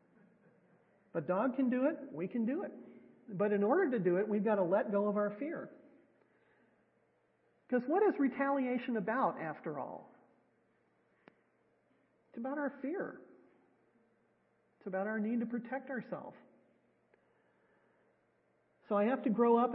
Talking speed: 145 wpm